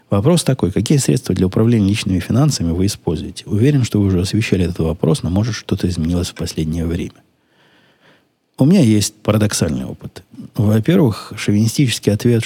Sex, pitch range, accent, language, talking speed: male, 90-110 Hz, native, Russian, 155 wpm